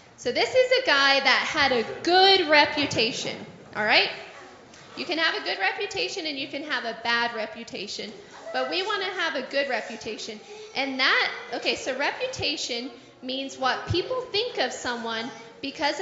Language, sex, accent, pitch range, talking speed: English, female, American, 240-360 Hz, 170 wpm